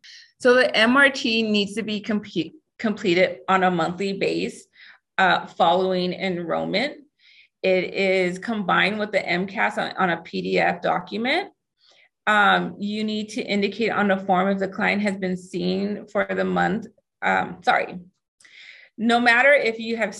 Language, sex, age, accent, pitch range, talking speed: English, female, 30-49, American, 180-210 Hz, 150 wpm